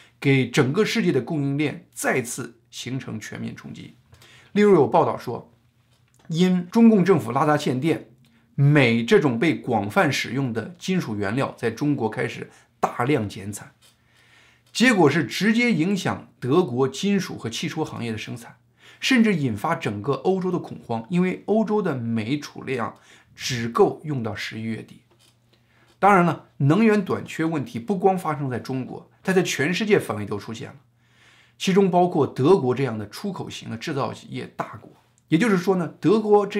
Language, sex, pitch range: Chinese, male, 115-180 Hz